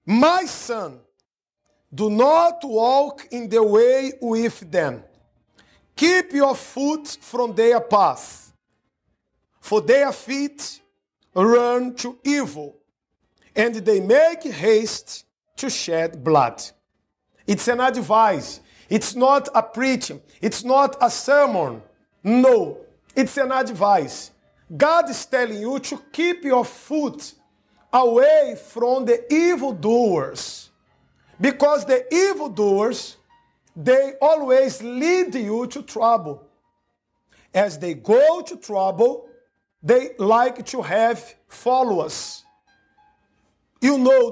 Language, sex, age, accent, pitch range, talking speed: English, male, 50-69, Brazilian, 215-280 Hz, 105 wpm